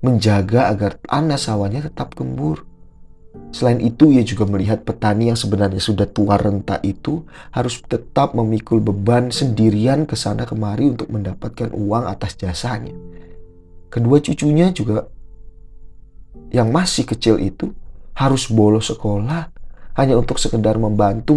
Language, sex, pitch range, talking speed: Indonesian, male, 100-135 Hz, 125 wpm